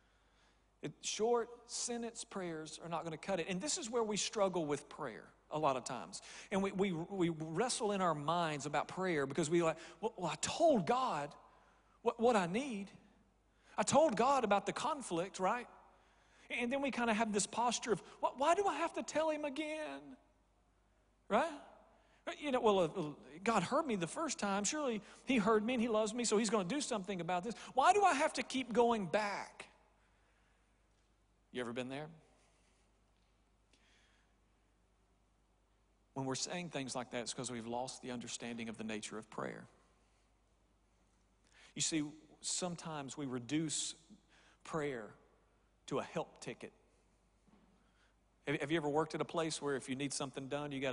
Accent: American